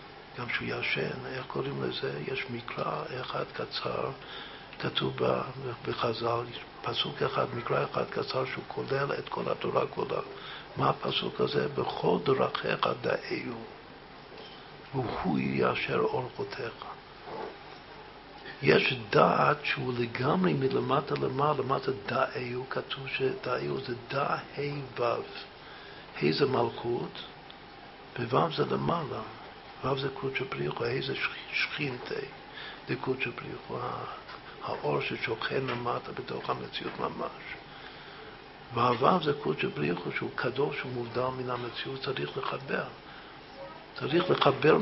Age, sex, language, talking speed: 50-69, male, Hebrew, 90 wpm